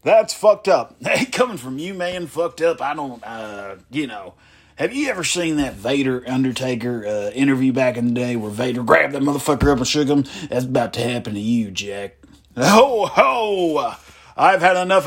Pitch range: 120-170 Hz